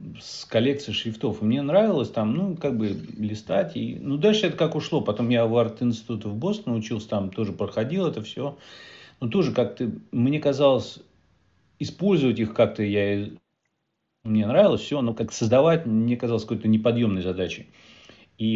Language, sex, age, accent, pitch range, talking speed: Russian, male, 30-49, native, 105-130 Hz, 160 wpm